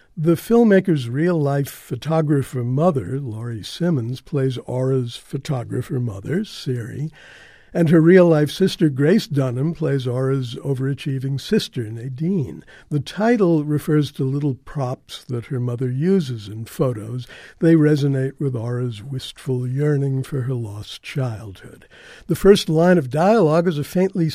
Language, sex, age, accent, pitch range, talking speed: English, male, 60-79, American, 130-160 Hz, 130 wpm